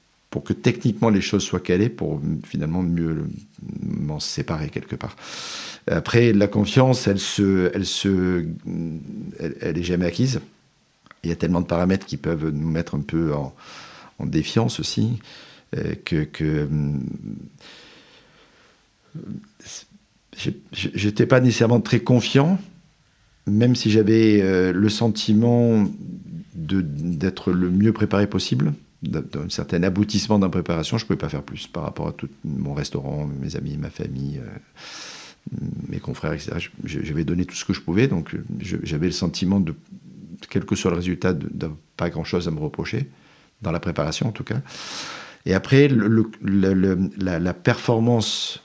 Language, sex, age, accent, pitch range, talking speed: French, male, 50-69, French, 85-110 Hz, 150 wpm